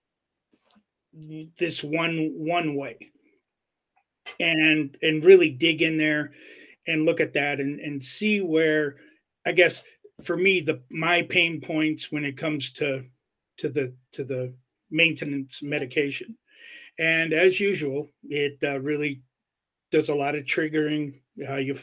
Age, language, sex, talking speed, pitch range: 40-59, English, male, 135 wpm, 145-170 Hz